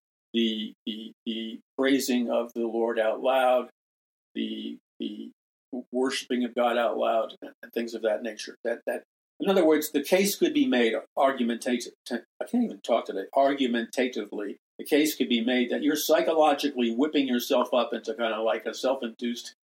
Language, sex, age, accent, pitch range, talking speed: English, male, 50-69, American, 120-140 Hz, 170 wpm